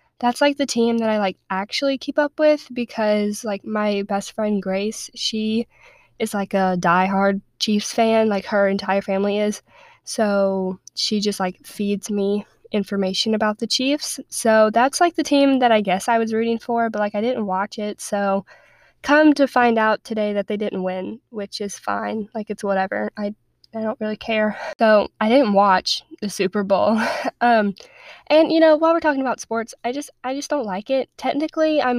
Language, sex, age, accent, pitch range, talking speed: English, female, 10-29, American, 200-245 Hz, 195 wpm